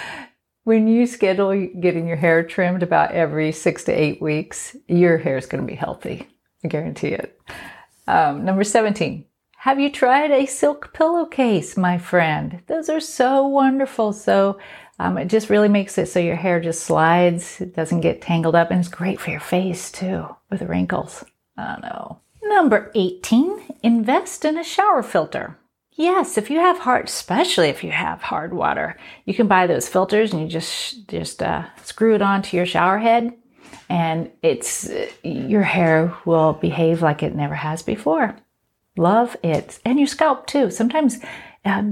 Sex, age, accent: female, 40-59, American